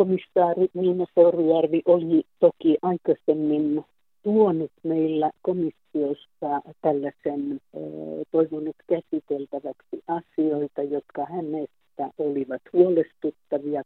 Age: 50-69